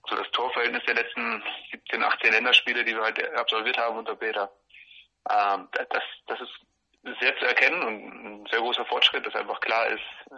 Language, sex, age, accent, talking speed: German, male, 30-49, German, 175 wpm